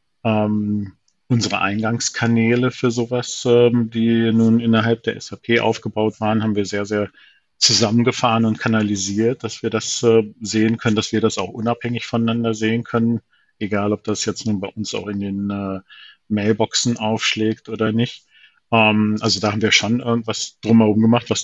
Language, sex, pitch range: German, male, 105-115 Hz